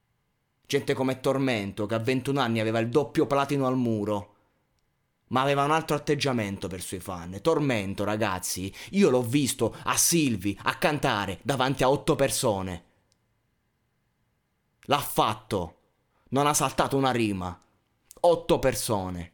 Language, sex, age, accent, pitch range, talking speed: Italian, male, 20-39, native, 105-130 Hz, 135 wpm